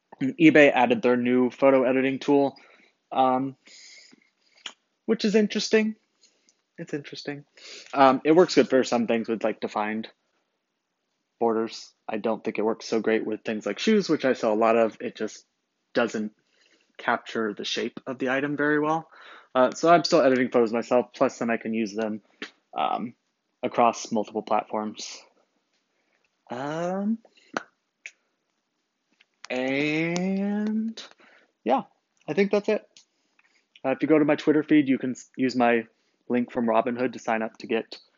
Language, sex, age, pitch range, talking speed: English, male, 20-39, 115-160 Hz, 150 wpm